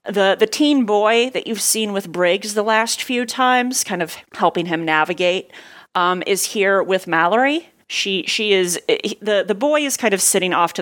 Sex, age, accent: female, 30-49, American